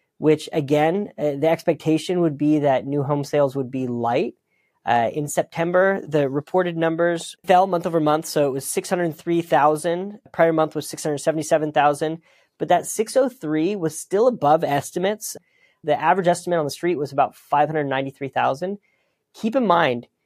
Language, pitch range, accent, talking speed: English, 145-175 Hz, American, 150 wpm